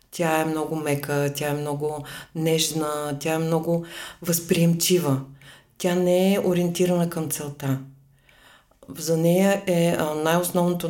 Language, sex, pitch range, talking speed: Bulgarian, female, 145-175 Hz, 120 wpm